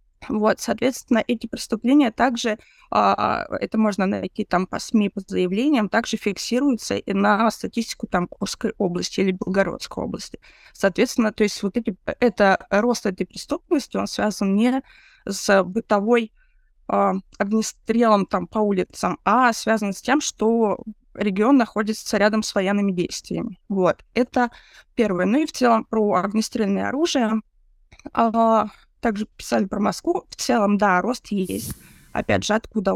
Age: 20-39